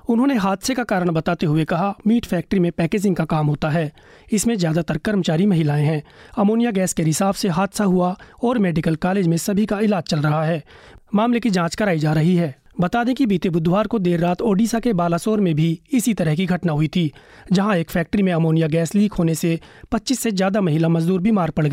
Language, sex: Hindi, male